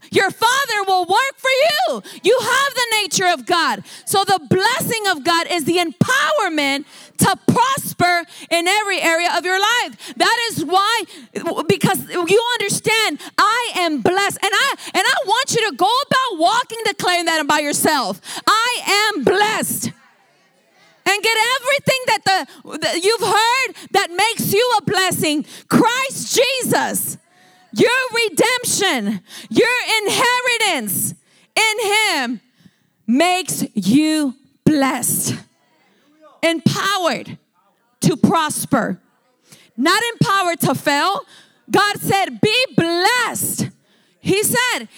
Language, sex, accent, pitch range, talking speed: English, female, American, 280-415 Hz, 125 wpm